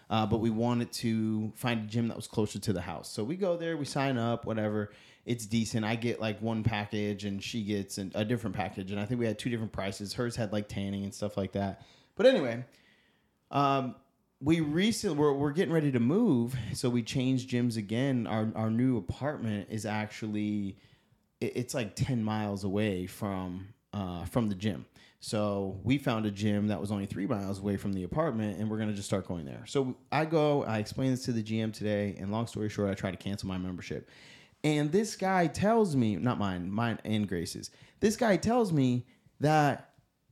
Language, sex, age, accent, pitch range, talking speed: English, male, 30-49, American, 105-145 Hz, 215 wpm